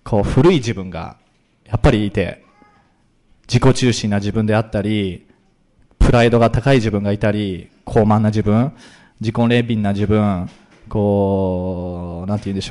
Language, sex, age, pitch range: Japanese, male, 20-39, 100-130 Hz